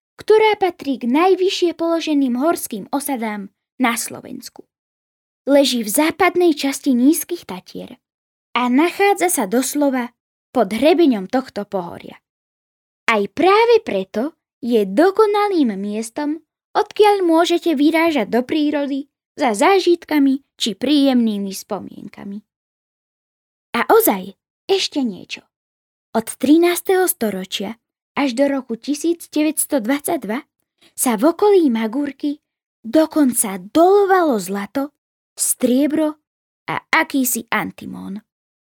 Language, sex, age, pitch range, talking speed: Slovak, female, 10-29, 245-335 Hz, 95 wpm